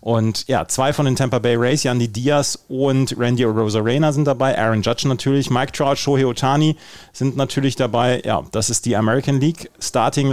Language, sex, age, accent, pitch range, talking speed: German, male, 30-49, German, 105-125 Hz, 185 wpm